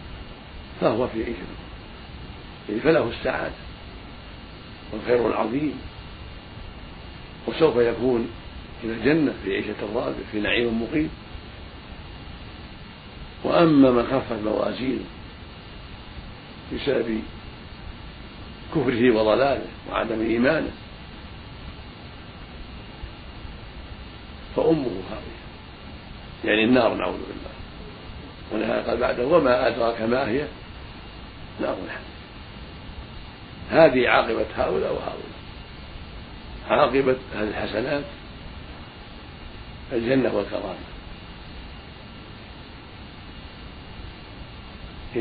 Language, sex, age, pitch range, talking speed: Arabic, male, 50-69, 90-120 Hz, 65 wpm